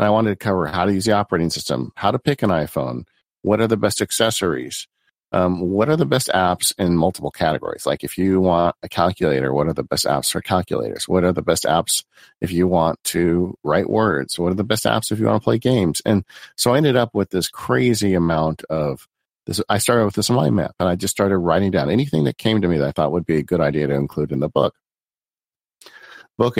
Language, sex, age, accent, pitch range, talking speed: English, male, 50-69, American, 85-105 Hz, 240 wpm